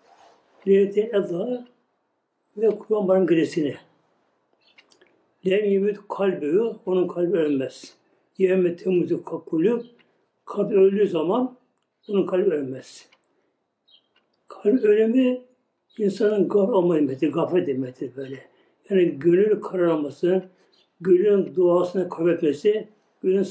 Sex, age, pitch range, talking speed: male, 60-79, 180-230 Hz, 90 wpm